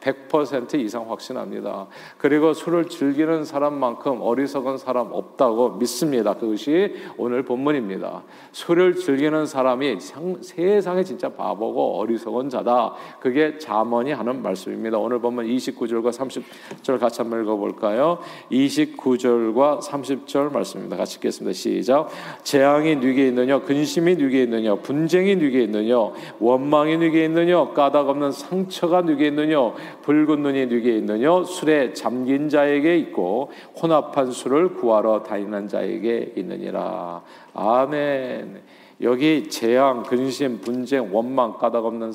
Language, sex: Korean, male